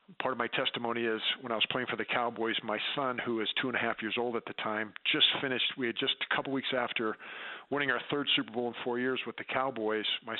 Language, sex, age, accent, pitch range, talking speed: English, male, 50-69, American, 110-125 Hz, 265 wpm